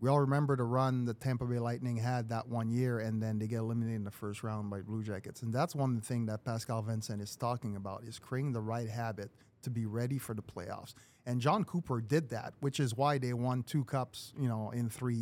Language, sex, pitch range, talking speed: English, male, 110-135 Hz, 245 wpm